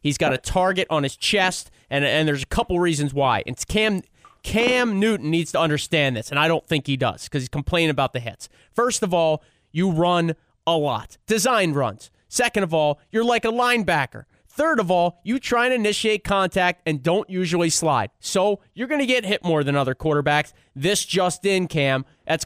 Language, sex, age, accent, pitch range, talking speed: English, male, 30-49, American, 160-220 Hz, 205 wpm